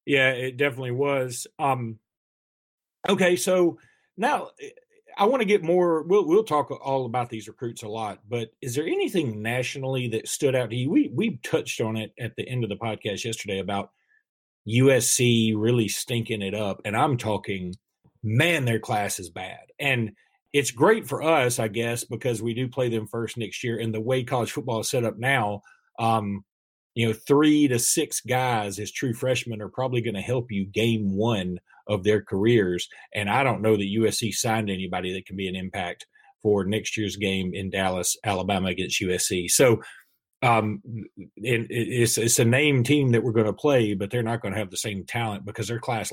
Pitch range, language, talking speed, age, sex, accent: 105-130 Hz, English, 195 wpm, 40-59, male, American